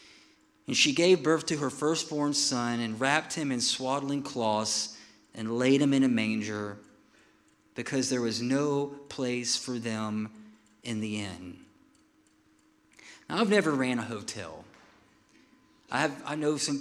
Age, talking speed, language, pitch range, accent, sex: 40-59, 145 wpm, English, 120-165 Hz, American, male